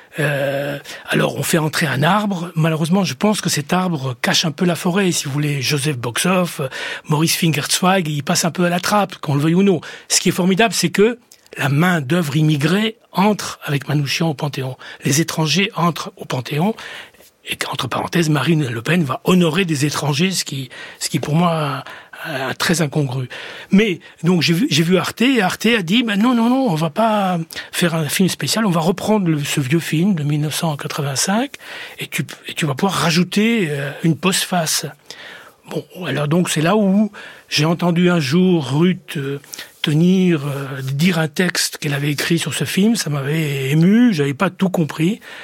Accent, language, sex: French, French, male